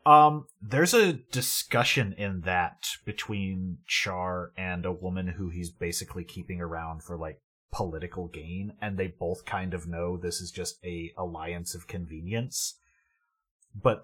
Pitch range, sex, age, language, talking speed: 90-125 Hz, male, 30-49, English, 145 wpm